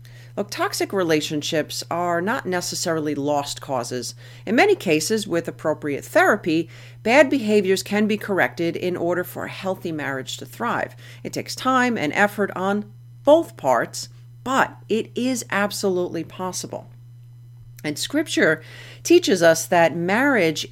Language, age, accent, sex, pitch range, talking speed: English, 40-59, American, female, 125-190 Hz, 135 wpm